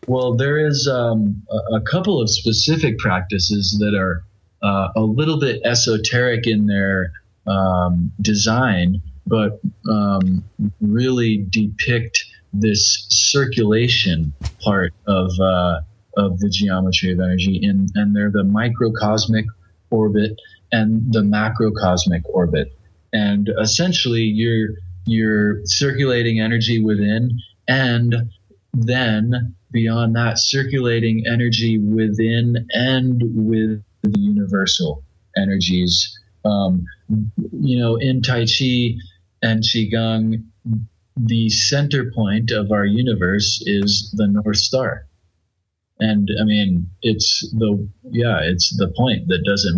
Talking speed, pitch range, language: 110 wpm, 100-115 Hz, English